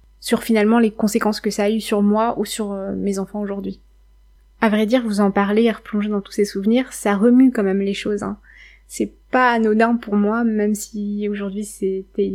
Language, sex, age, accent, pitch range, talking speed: French, female, 20-39, French, 195-215 Hz, 210 wpm